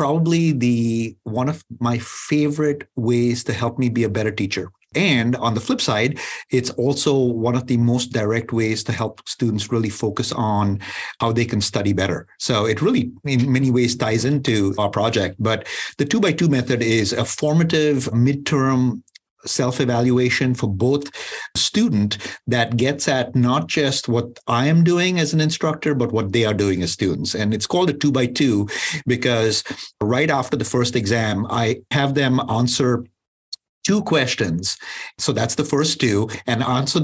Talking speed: 175 wpm